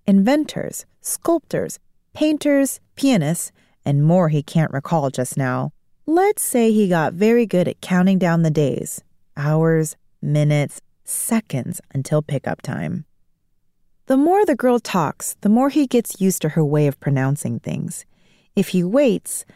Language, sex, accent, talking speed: English, female, American, 145 wpm